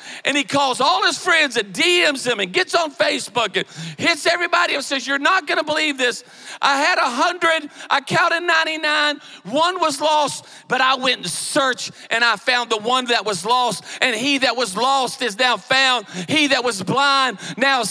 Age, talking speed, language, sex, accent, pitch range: 40-59, 195 wpm, English, male, American, 215-335 Hz